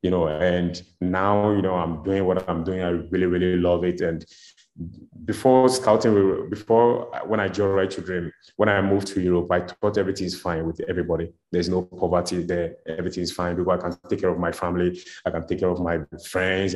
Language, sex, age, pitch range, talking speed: English, male, 20-39, 90-110 Hz, 205 wpm